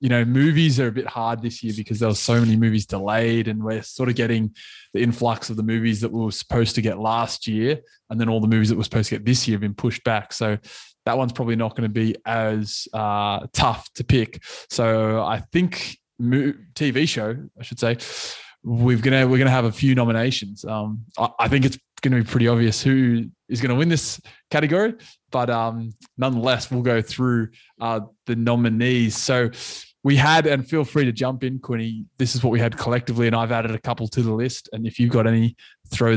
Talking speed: 225 wpm